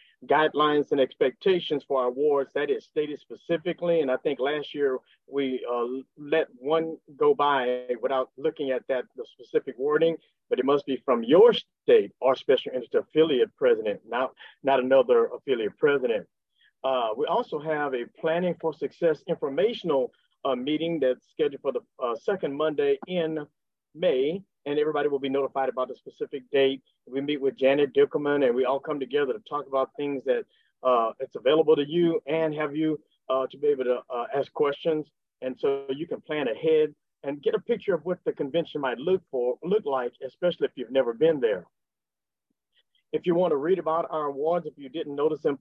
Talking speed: 185 wpm